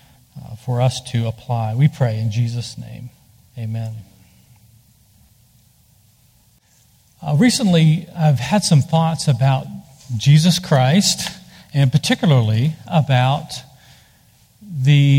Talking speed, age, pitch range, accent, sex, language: 95 wpm, 50-69, 125-160 Hz, American, male, English